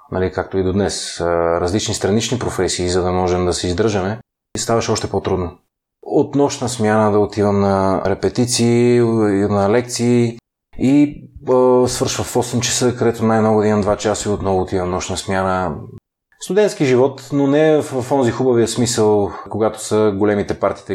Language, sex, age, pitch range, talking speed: Bulgarian, male, 30-49, 100-120 Hz, 160 wpm